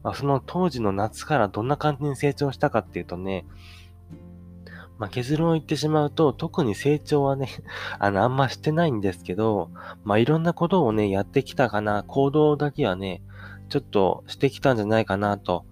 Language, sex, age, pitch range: Japanese, male, 20-39, 95-140 Hz